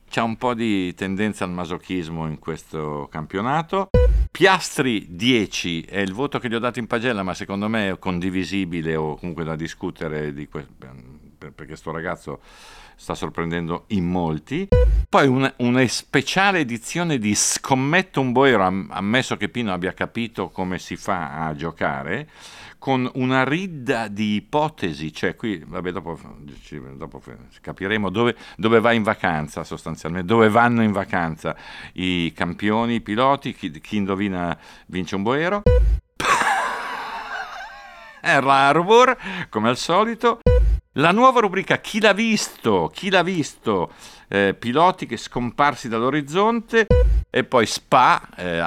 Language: Italian